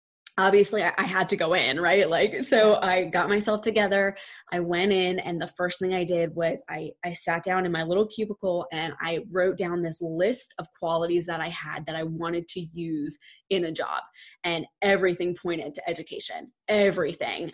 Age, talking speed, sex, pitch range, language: 20-39, 190 wpm, female, 170-195 Hz, English